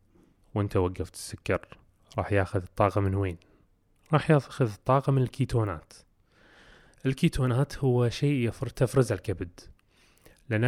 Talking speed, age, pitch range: 110 wpm, 30-49, 95-120 Hz